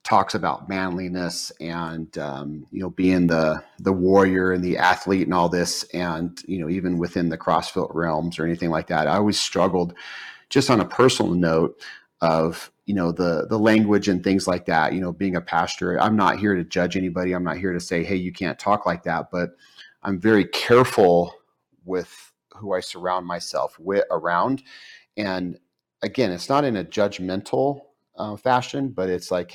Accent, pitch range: American, 85-95 Hz